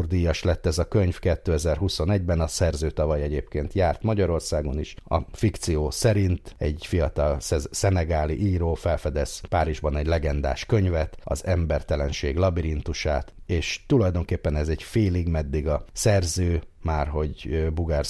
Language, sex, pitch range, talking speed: Hungarian, male, 75-95 Hz, 130 wpm